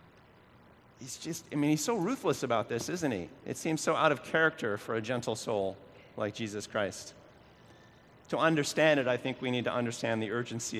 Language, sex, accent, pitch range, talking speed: English, male, American, 110-145 Hz, 195 wpm